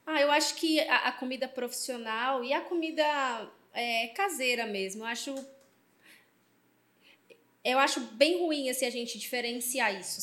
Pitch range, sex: 225-275 Hz, female